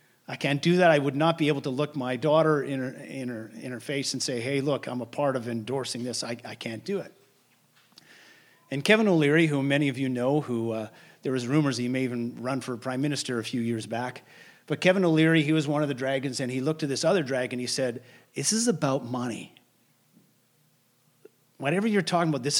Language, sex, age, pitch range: English, male, 40-59, 130-160 Hz